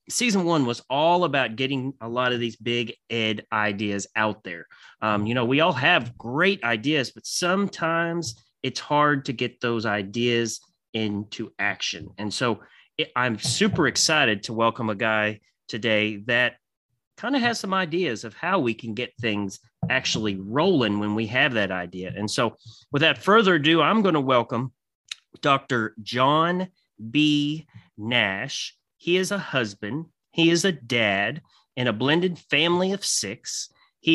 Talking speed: 160 wpm